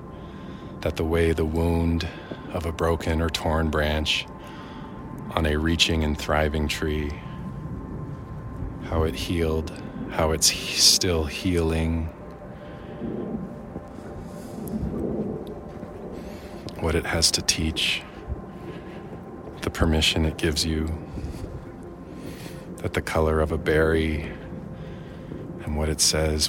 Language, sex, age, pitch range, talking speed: English, male, 40-59, 75-85 Hz, 100 wpm